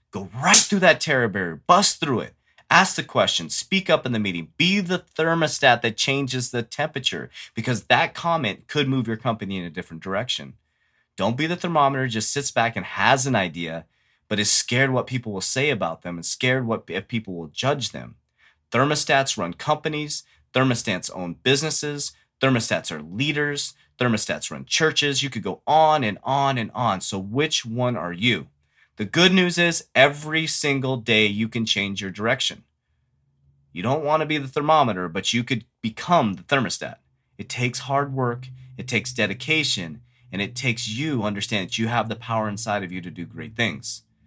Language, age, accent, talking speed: English, 30-49, American, 185 wpm